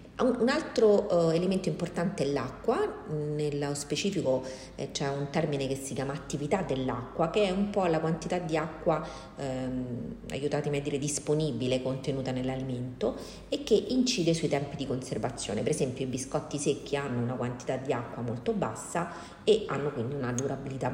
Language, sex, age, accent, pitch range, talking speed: Italian, female, 40-59, native, 130-165 Hz, 160 wpm